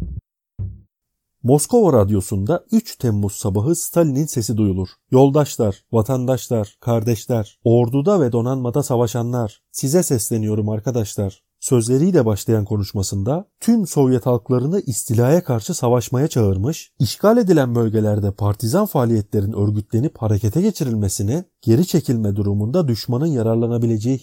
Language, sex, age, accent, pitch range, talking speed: Turkish, male, 30-49, native, 105-150 Hz, 100 wpm